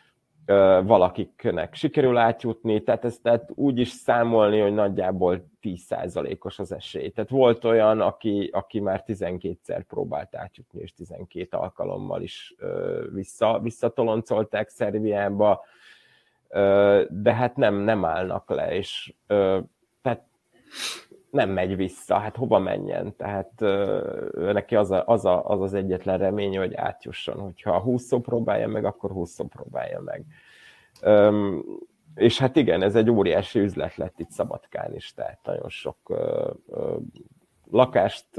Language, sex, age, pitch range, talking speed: Hungarian, male, 30-49, 95-115 Hz, 135 wpm